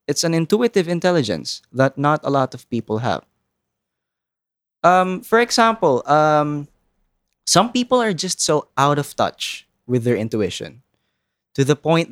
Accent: Filipino